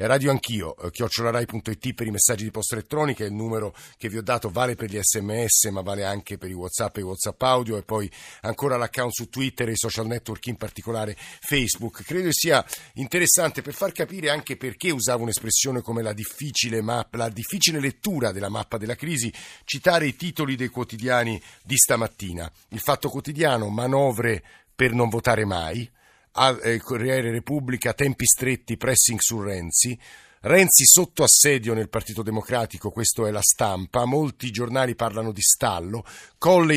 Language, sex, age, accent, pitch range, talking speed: Italian, male, 50-69, native, 105-130 Hz, 165 wpm